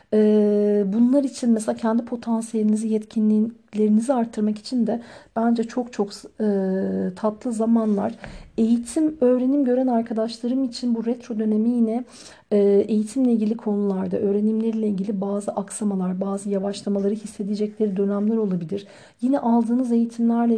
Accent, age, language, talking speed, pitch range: native, 50-69, Turkish, 120 wpm, 200-235 Hz